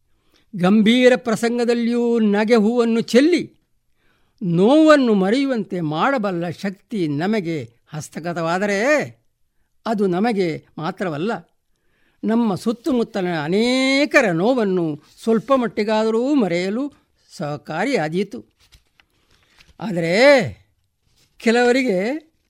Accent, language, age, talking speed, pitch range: native, Kannada, 60-79, 65 wpm, 190-245 Hz